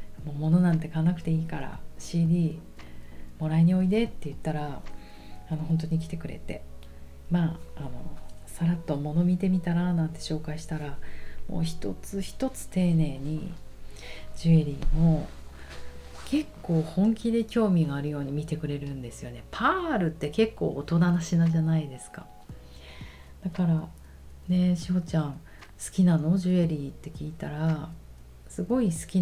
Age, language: 40-59, Japanese